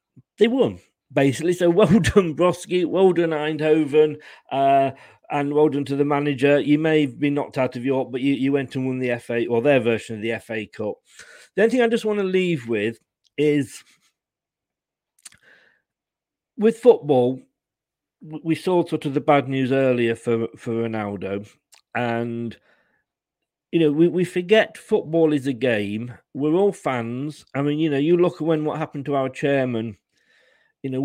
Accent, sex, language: British, male, English